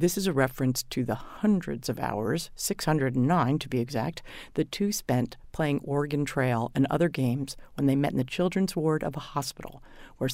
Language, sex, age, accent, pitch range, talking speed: English, female, 50-69, American, 125-155 Hz, 190 wpm